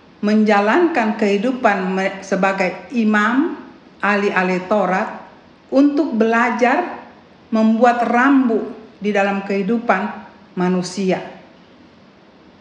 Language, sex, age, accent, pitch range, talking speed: Indonesian, female, 50-69, native, 185-235 Hz, 60 wpm